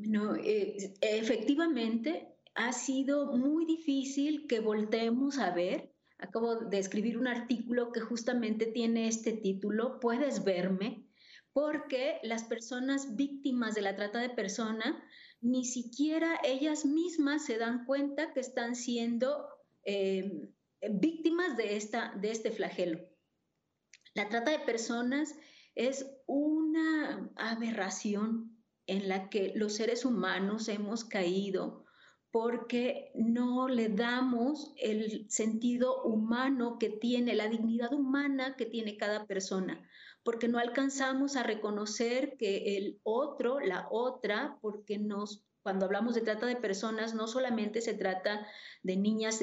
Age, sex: 30-49, female